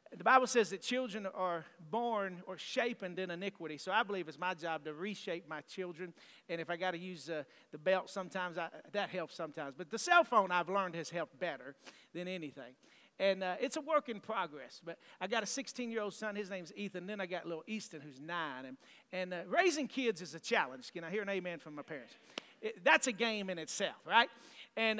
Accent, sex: American, male